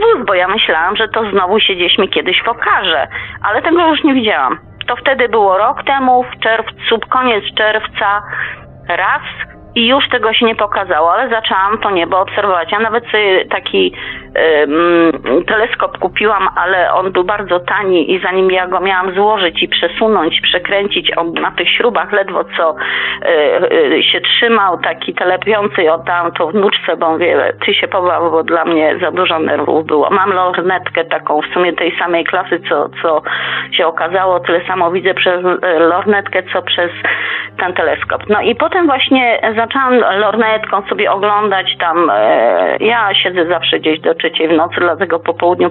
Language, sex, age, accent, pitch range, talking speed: Polish, female, 30-49, native, 175-235 Hz, 170 wpm